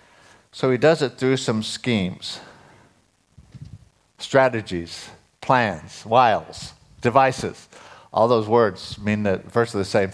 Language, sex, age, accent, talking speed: English, male, 60-79, American, 105 wpm